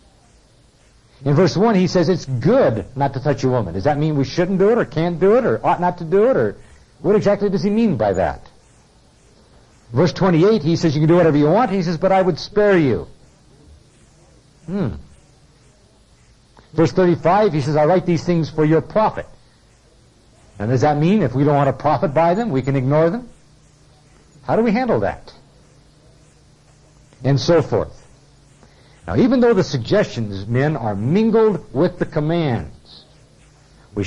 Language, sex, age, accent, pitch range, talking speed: English, male, 60-79, American, 130-180 Hz, 180 wpm